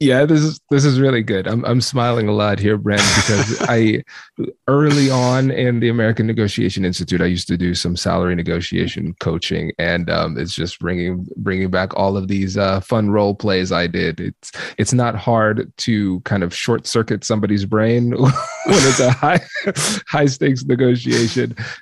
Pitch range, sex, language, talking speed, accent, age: 95-120 Hz, male, English, 180 wpm, American, 30-49